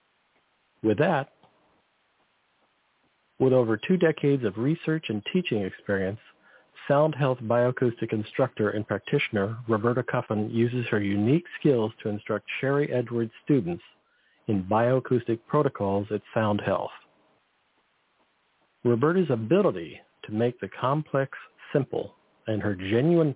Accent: American